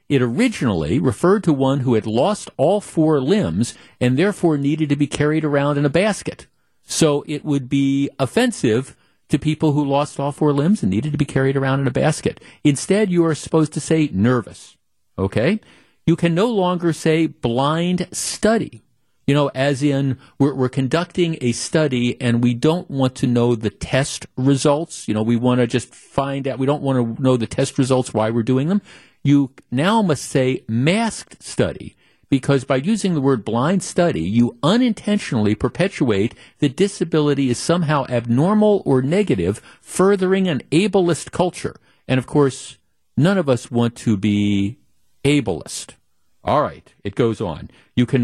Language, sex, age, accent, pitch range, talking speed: English, male, 50-69, American, 125-165 Hz, 175 wpm